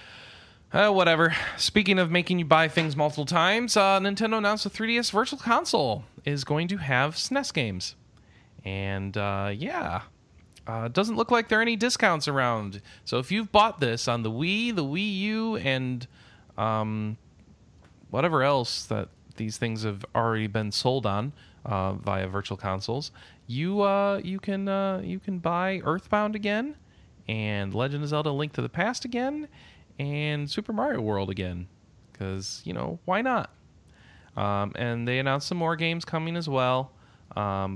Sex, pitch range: male, 100-170 Hz